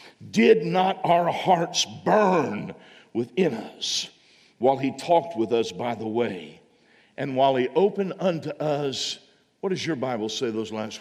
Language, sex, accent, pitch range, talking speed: English, male, American, 135-215 Hz, 155 wpm